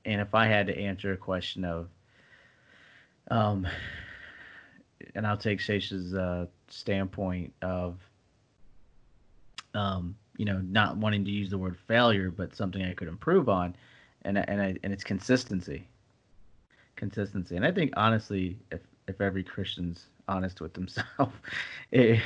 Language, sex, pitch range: English, male, 90-110 Hz